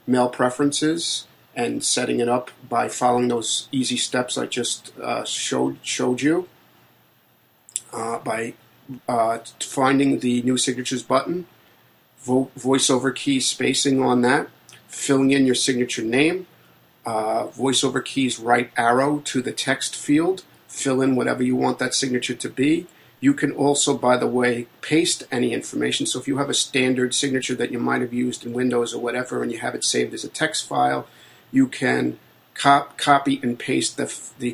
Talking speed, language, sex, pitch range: 165 wpm, English, male, 120-140 Hz